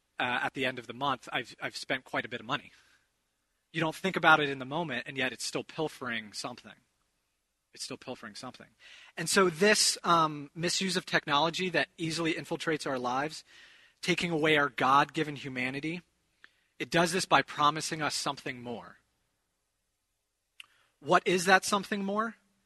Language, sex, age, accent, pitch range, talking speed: English, male, 30-49, American, 115-160 Hz, 165 wpm